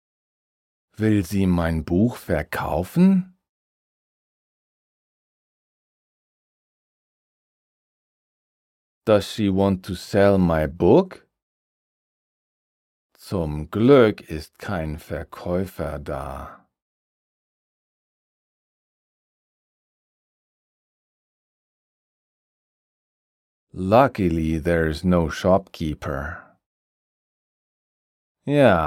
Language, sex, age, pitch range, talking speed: German, male, 40-59, 80-100 Hz, 50 wpm